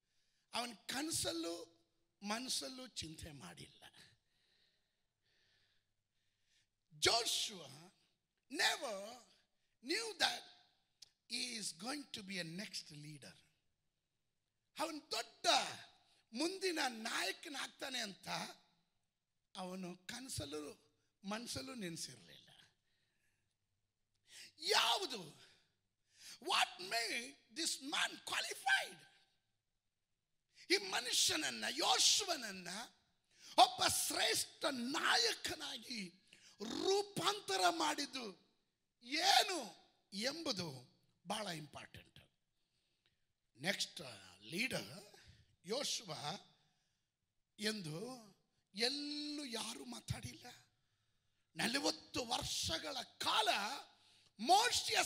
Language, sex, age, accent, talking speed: Kannada, male, 50-69, native, 55 wpm